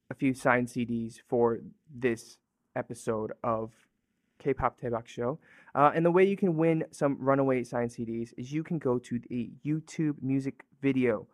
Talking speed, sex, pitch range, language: 165 wpm, male, 120-145 Hz, English